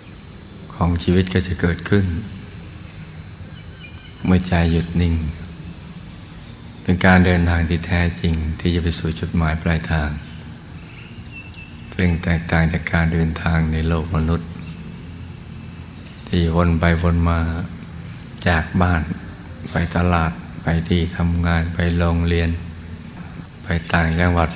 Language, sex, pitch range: Thai, male, 85-90 Hz